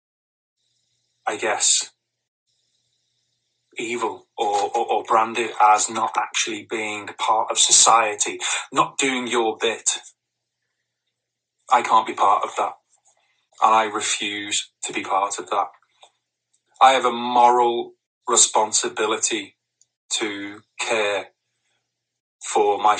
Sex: male